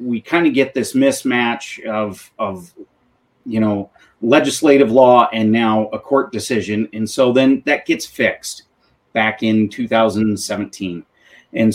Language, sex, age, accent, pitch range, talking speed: English, male, 30-49, American, 105-130 Hz, 140 wpm